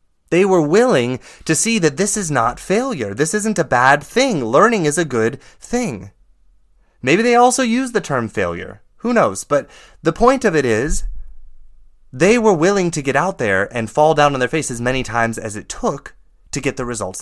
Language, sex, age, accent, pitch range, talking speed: English, male, 20-39, American, 120-180 Hz, 200 wpm